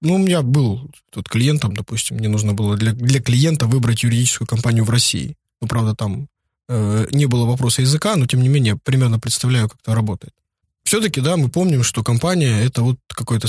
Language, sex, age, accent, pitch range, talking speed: Russian, male, 20-39, native, 110-145 Hz, 195 wpm